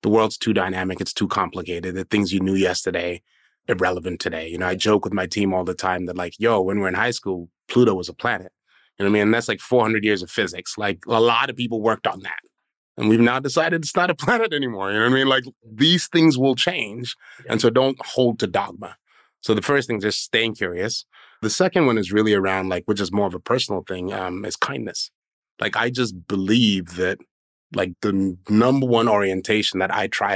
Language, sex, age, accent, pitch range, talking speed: English, male, 30-49, American, 95-120 Hz, 235 wpm